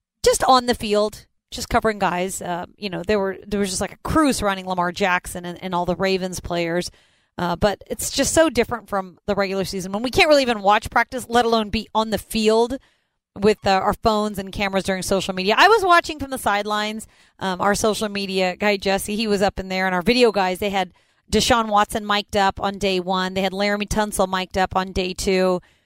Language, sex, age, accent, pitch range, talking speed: English, female, 30-49, American, 190-240 Hz, 225 wpm